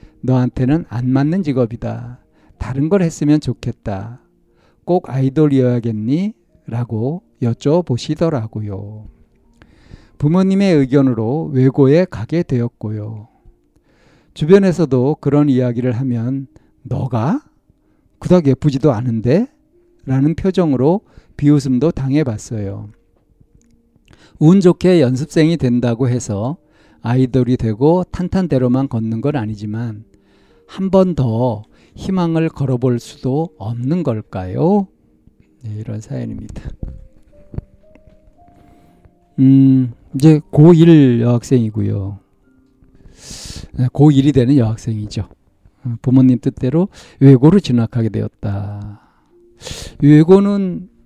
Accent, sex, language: native, male, Korean